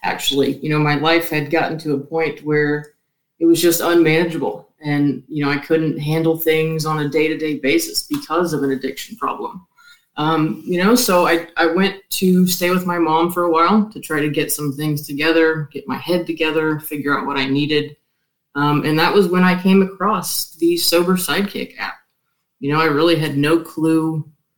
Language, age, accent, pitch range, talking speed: English, 20-39, American, 150-175 Hz, 205 wpm